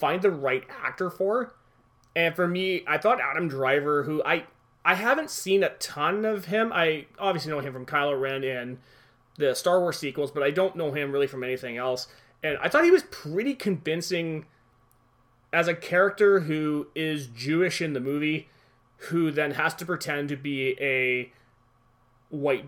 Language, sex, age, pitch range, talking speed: English, male, 30-49, 130-180 Hz, 175 wpm